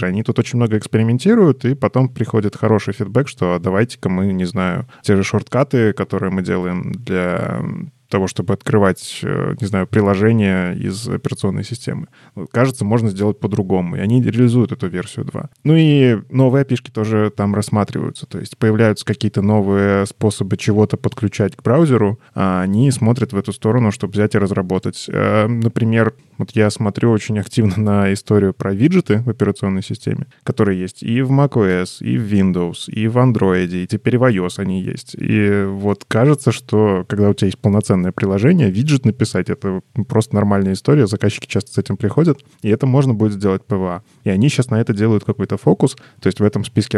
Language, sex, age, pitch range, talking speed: Russian, male, 20-39, 100-120 Hz, 180 wpm